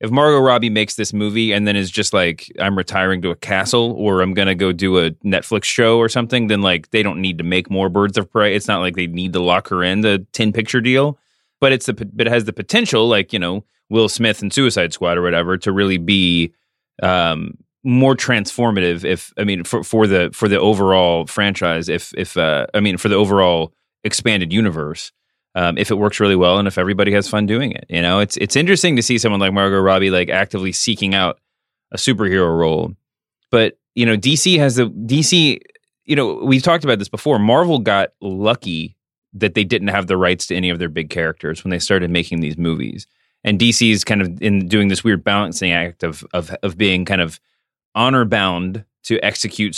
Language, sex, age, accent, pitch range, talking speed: English, male, 30-49, American, 90-115 Hz, 220 wpm